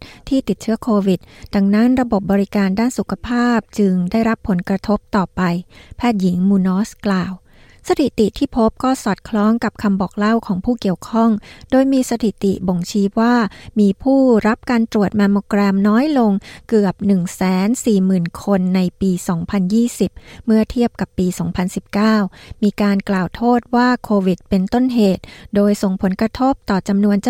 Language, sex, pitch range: Thai, female, 195-235 Hz